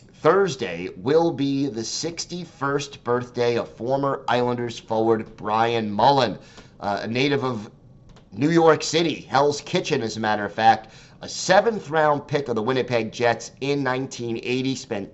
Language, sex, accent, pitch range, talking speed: English, male, American, 115-145 Hz, 145 wpm